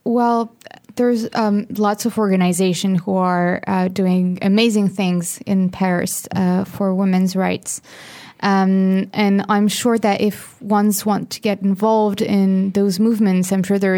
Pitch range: 185-205 Hz